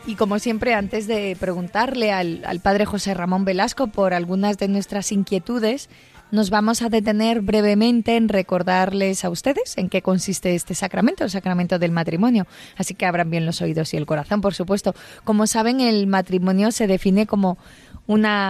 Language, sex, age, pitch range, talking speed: Spanish, female, 20-39, 190-225 Hz, 175 wpm